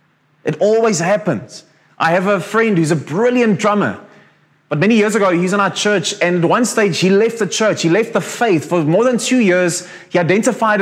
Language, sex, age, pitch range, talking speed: English, male, 20-39, 175-220 Hz, 215 wpm